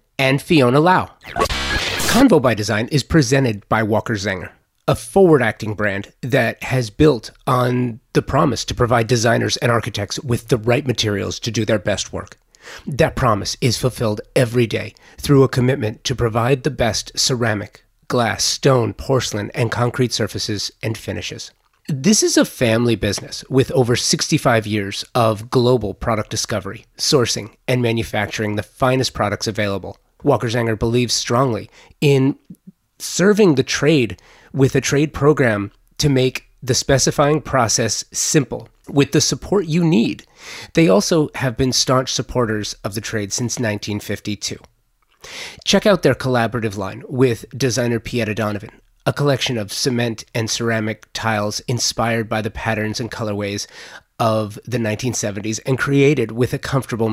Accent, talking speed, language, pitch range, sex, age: American, 150 wpm, English, 110-135 Hz, male, 30-49